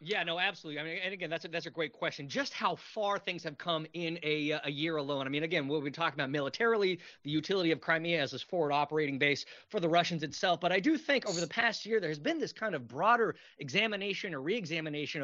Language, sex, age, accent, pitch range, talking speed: English, male, 30-49, American, 160-215 Hz, 250 wpm